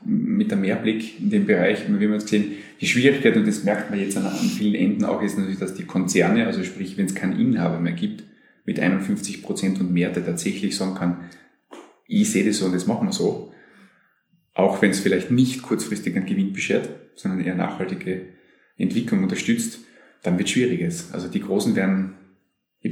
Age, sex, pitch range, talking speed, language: 30-49, male, 95-150 Hz, 200 wpm, German